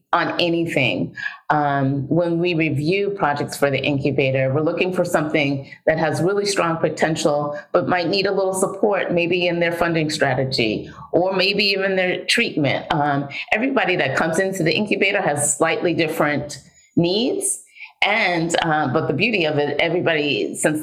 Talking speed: 160 wpm